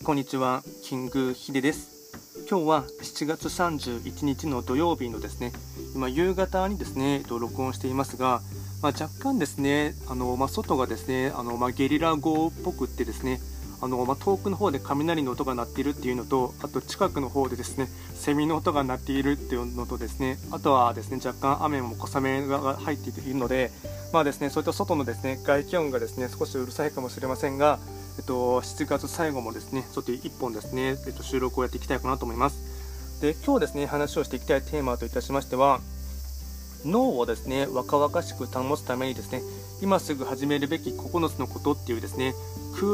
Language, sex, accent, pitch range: Japanese, male, native, 115-145 Hz